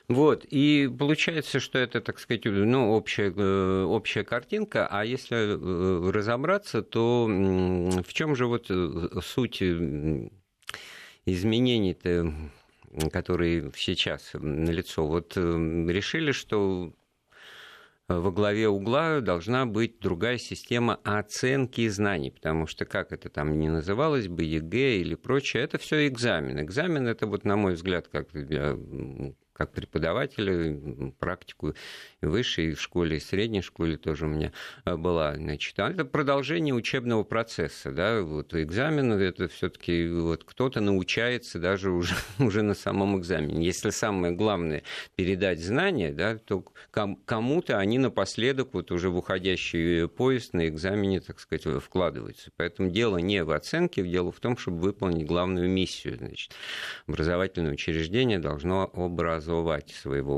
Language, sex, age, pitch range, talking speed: Russian, male, 50-69, 85-115 Hz, 130 wpm